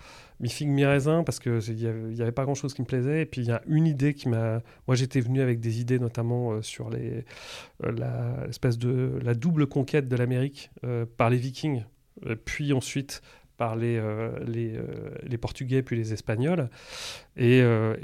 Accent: French